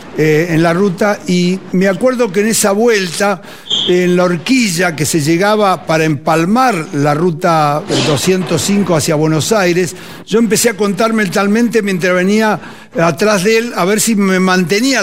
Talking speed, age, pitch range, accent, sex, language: 160 wpm, 60-79, 170-220 Hz, Argentinian, male, Spanish